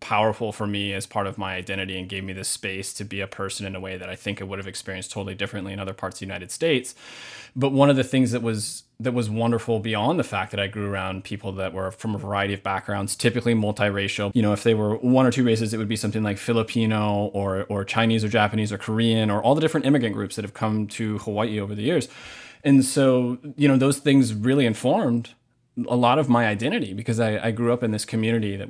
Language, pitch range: English, 100-120 Hz